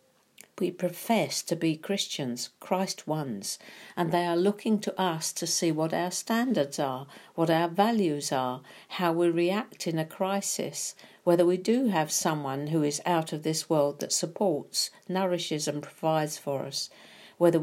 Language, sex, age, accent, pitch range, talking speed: English, female, 50-69, British, 150-195 Hz, 165 wpm